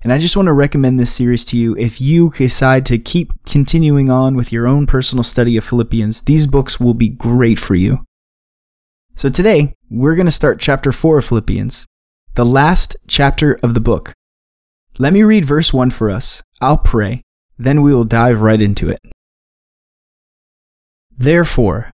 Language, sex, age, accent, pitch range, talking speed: English, male, 20-39, American, 115-145 Hz, 175 wpm